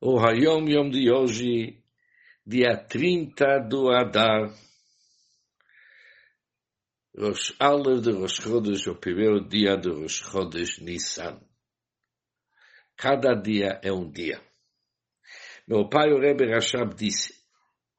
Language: English